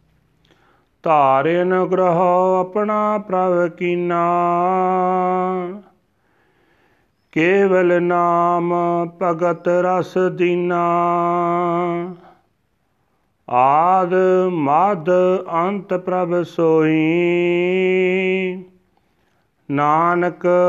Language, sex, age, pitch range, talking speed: Punjabi, male, 40-59, 125-175 Hz, 45 wpm